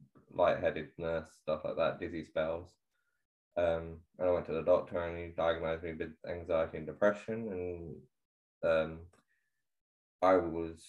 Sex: male